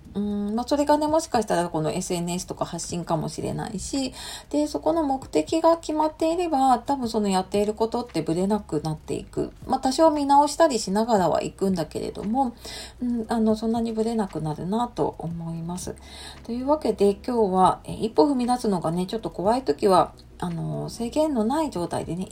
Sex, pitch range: female, 180-260 Hz